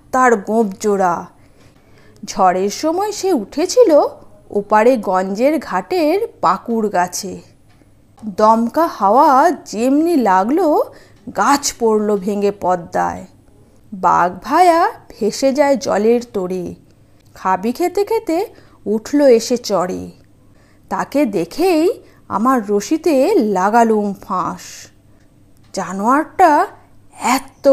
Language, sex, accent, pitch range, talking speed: Bengali, female, native, 180-270 Hz, 90 wpm